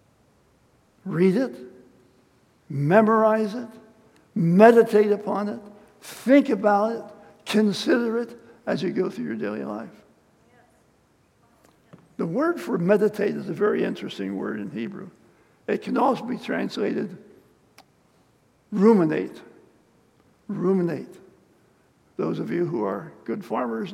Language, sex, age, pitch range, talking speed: English, male, 60-79, 175-230 Hz, 110 wpm